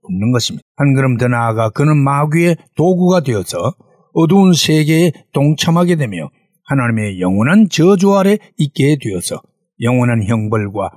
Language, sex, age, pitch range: Korean, male, 60-79, 125-175 Hz